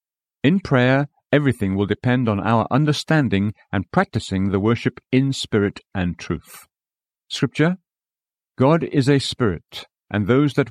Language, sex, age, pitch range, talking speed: English, male, 50-69, 105-140 Hz, 135 wpm